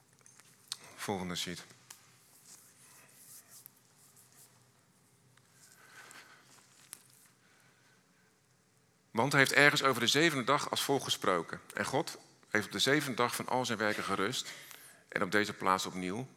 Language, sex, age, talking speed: Dutch, male, 50-69, 110 wpm